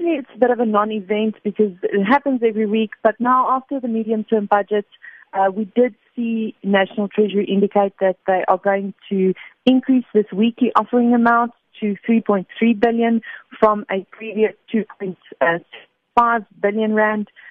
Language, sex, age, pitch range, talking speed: English, female, 40-59, 195-235 Hz, 145 wpm